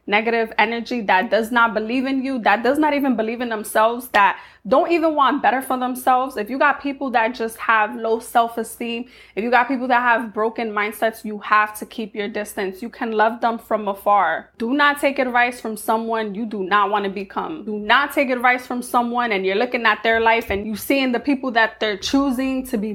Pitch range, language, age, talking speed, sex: 215-255 Hz, English, 20-39, 220 wpm, female